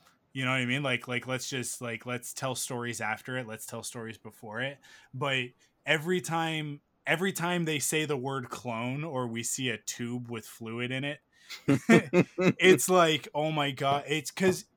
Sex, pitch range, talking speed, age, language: male, 115-150 Hz, 185 wpm, 20-39, English